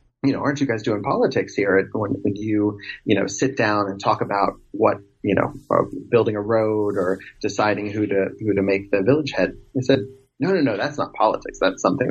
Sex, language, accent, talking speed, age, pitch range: male, English, American, 220 wpm, 30-49, 100-130 Hz